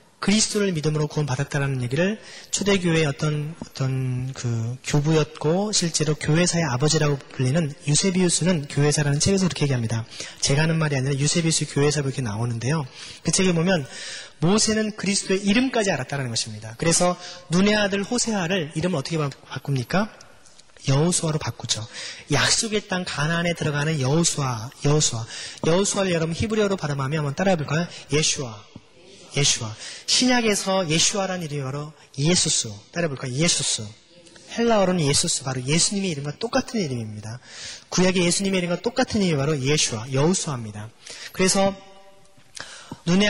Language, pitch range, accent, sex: Korean, 140-190 Hz, native, male